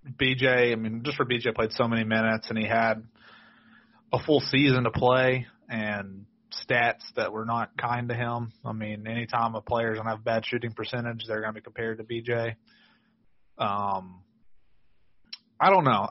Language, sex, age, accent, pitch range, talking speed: English, male, 30-49, American, 110-125 Hz, 180 wpm